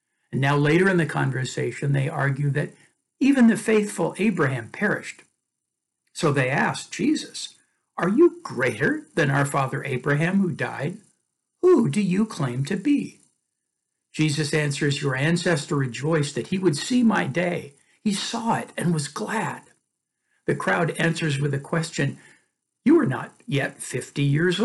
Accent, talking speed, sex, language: American, 150 wpm, male, English